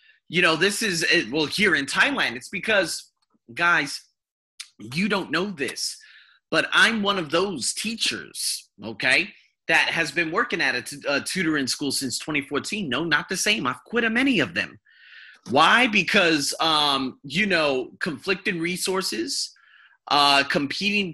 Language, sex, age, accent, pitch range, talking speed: English, male, 30-49, American, 145-205 Hz, 145 wpm